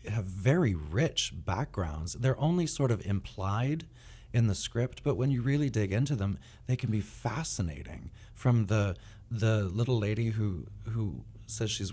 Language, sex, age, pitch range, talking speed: English, male, 30-49, 90-115 Hz, 160 wpm